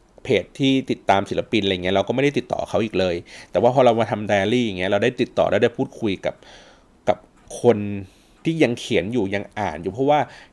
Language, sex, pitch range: Thai, male, 105-135 Hz